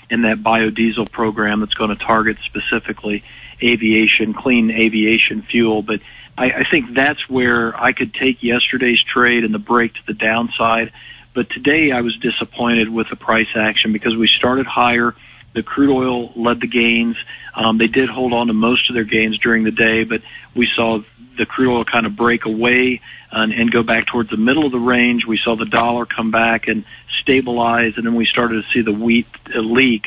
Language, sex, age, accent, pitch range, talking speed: English, male, 40-59, American, 110-120 Hz, 195 wpm